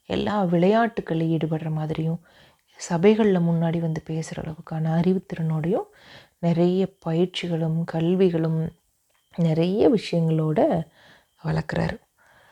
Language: Tamil